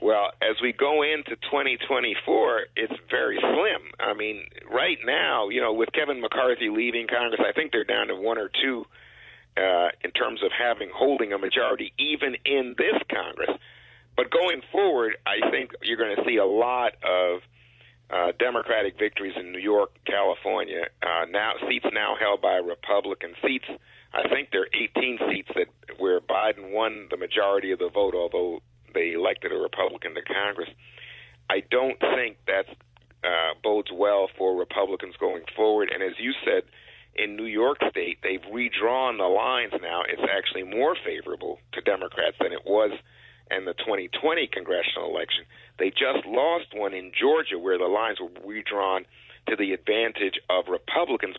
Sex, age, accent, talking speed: male, 50-69, American, 165 wpm